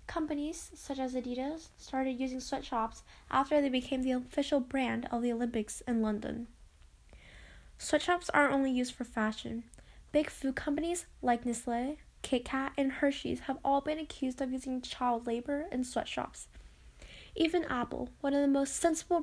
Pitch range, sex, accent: 250-290 Hz, female, American